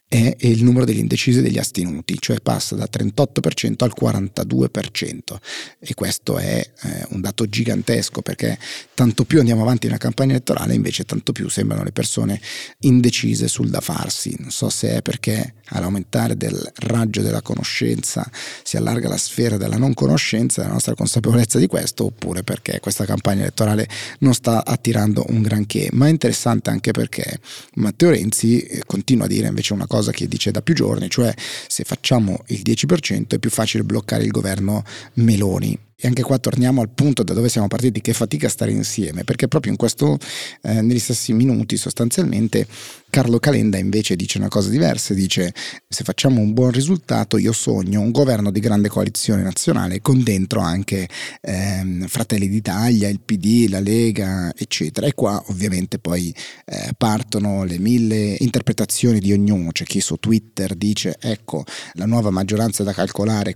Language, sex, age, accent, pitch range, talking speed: Italian, male, 30-49, native, 100-120 Hz, 170 wpm